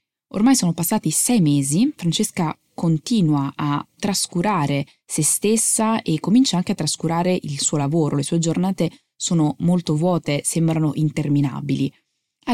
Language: Italian